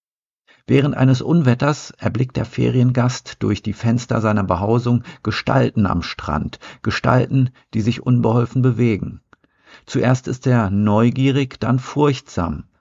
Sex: male